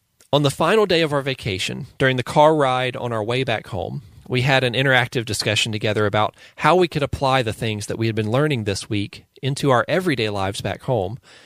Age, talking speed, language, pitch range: 40-59, 220 wpm, English, 110-140 Hz